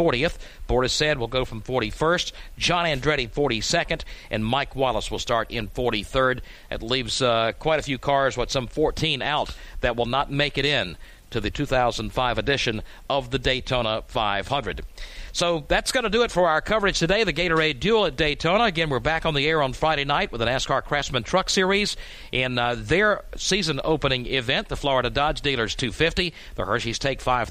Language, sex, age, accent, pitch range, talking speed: English, male, 50-69, American, 125-170 Hz, 205 wpm